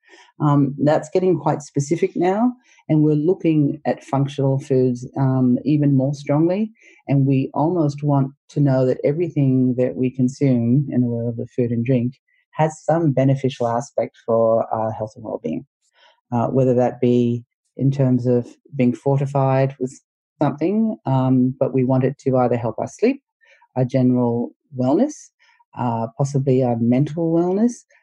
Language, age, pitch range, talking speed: English, 40-59, 120-145 Hz, 155 wpm